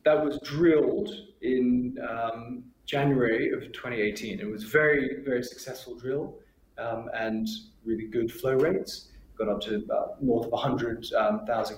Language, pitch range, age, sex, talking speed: English, 120-150 Hz, 20-39, male, 140 wpm